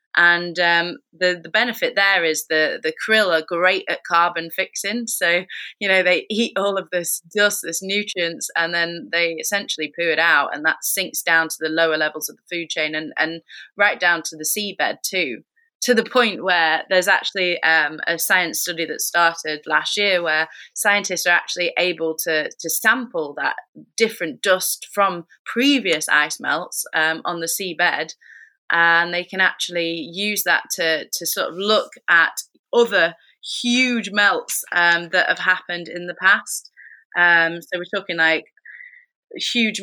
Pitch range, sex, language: 165-200 Hz, female, English